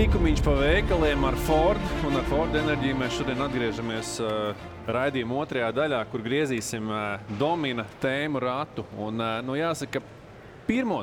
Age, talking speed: 20-39, 145 wpm